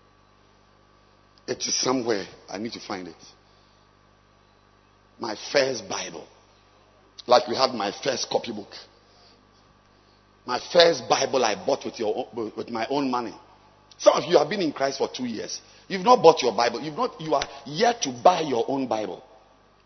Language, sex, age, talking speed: English, male, 50-69, 165 wpm